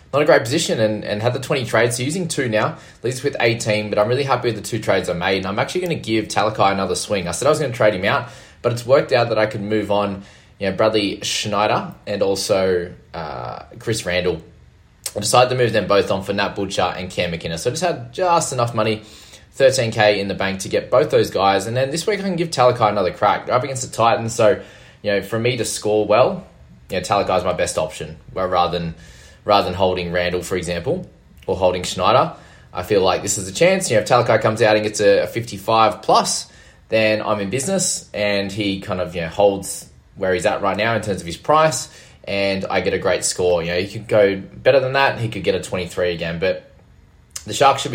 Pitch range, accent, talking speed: 95-115 Hz, Australian, 245 wpm